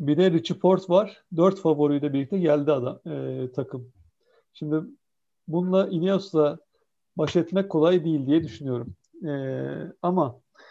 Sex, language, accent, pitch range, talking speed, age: male, Turkish, native, 145-195 Hz, 130 wpm, 60-79